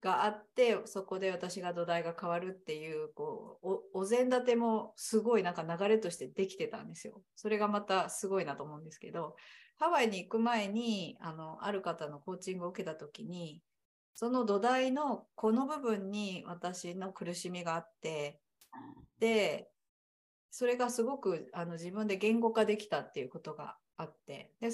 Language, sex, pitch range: English, female, 175-225 Hz